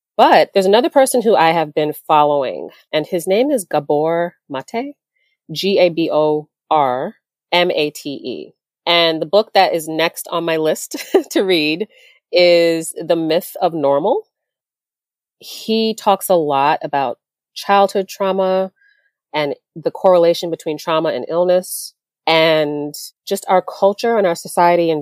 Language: English